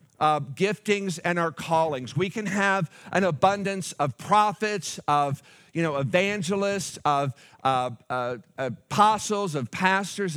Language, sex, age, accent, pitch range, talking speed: English, male, 50-69, American, 145-190 Hz, 125 wpm